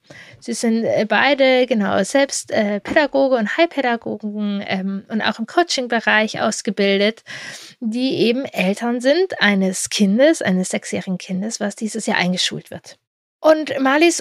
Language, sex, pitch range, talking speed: German, female, 210-275 Hz, 125 wpm